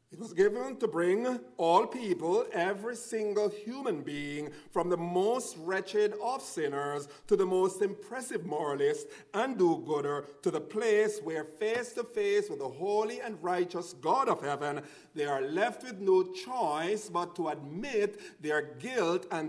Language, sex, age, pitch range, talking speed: English, male, 50-69, 170-240 Hz, 155 wpm